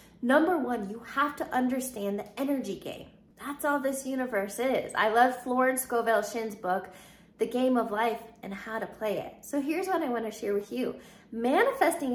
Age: 20-39